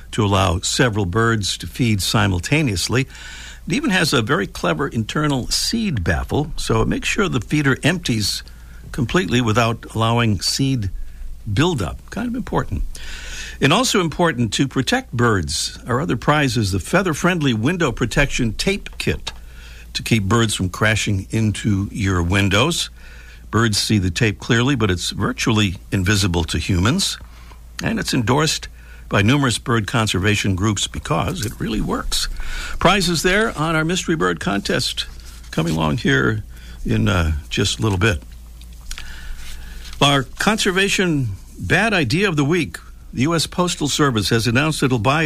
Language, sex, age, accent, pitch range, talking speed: English, male, 60-79, American, 90-145 Hz, 145 wpm